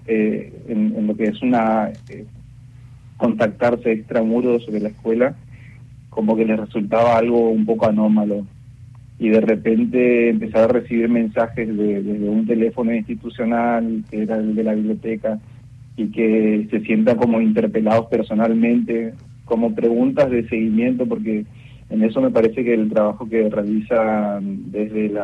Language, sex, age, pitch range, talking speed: Spanish, male, 30-49, 110-120 Hz, 145 wpm